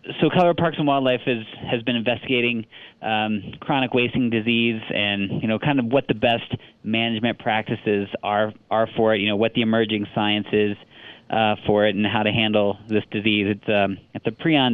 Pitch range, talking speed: 105-120 Hz, 200 wpm